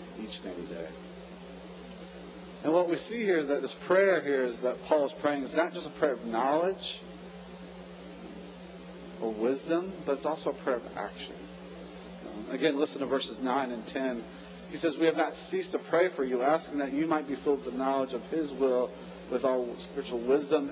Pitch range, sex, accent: 110-150 Hz, male, American